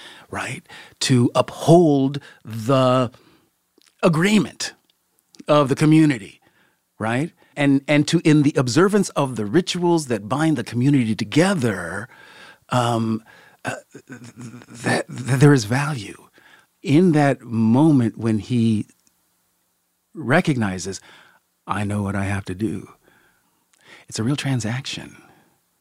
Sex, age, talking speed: male, 50-69, 110 wpm